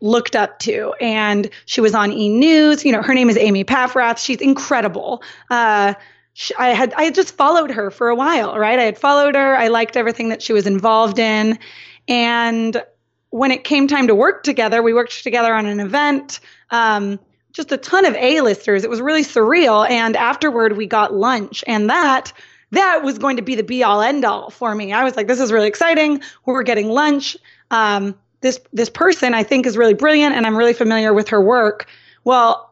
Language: English